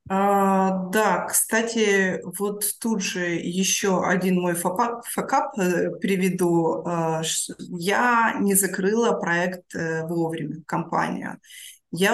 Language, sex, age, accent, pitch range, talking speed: Russian, female, 20-39, native, 175-200 Hz, 90 wpm